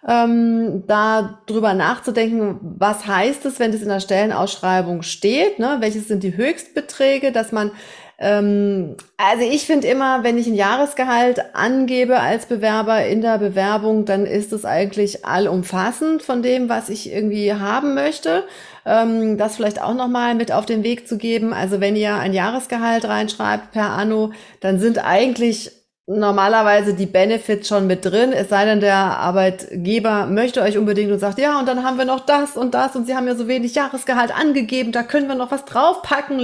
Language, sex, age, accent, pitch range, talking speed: German, female, 30-49, German, 195-240 Hz, 180 wpm